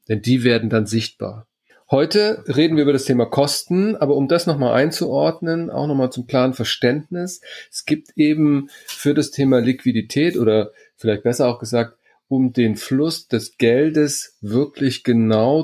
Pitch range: 115-150 Hz